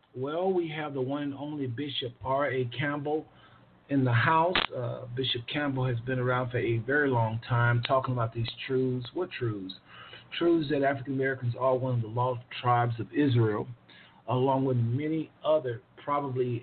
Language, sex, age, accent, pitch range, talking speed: English, male, 50-69, American, 115-130 Hz, 170 wpm